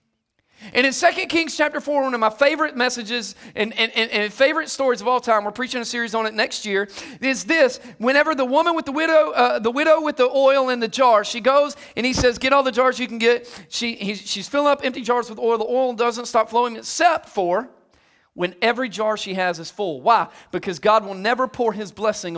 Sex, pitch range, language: male, 210-275 Hz, English